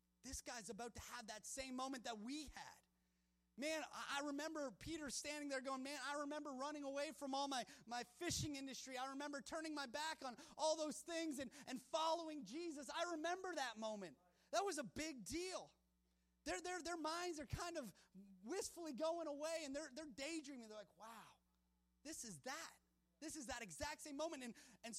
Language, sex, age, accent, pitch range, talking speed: English, male, 30-49, American, 215-315 Hz, 185 wpm